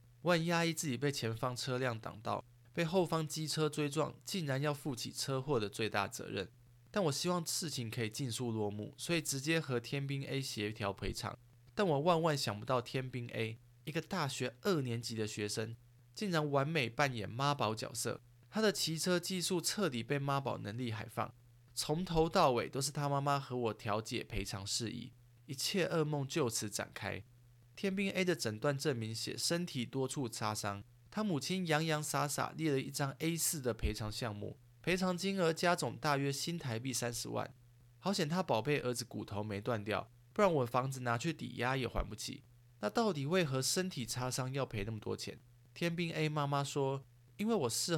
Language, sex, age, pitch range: Chinese, male, 20-39, 120-155 Hz